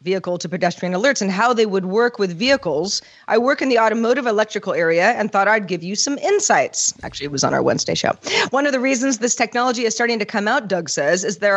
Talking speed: 235 wpm